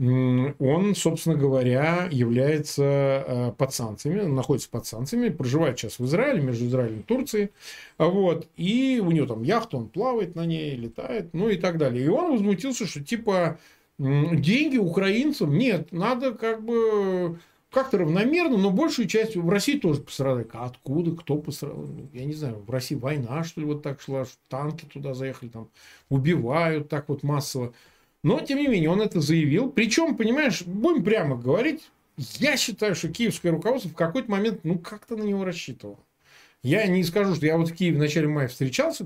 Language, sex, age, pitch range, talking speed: Russian, male, 40-59, 130-195 Hz, 170 wpm